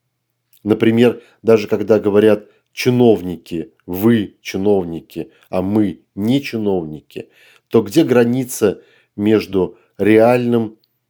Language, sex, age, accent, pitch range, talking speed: Russian, male, 40-59, native, 100-120 Hz, 85 wpm